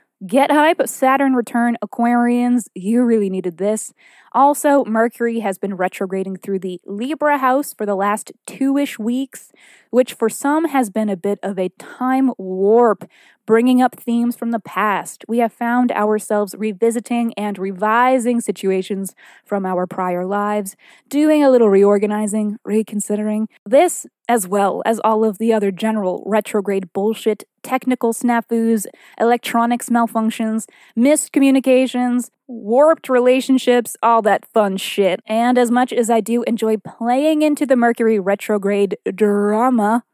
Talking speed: 140 wpm